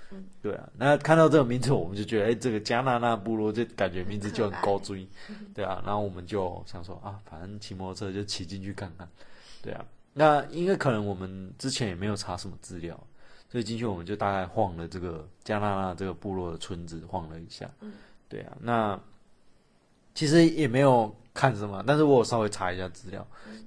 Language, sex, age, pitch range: Chinese, male, 20-39, 95-120 Hz